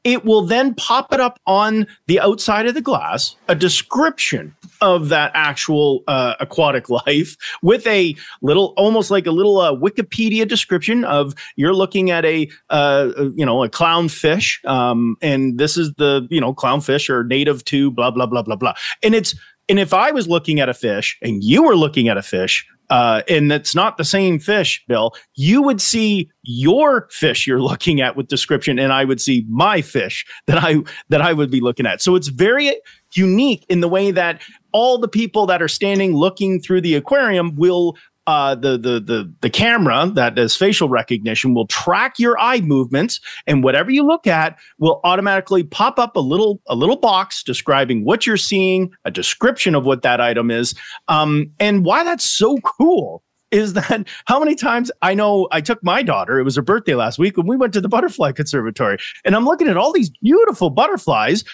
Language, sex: English, male